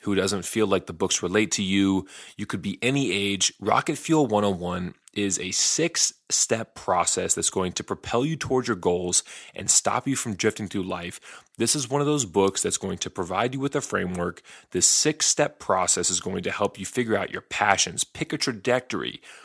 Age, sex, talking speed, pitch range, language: 30-49, male, 205 wpm, 95-135 Hz, English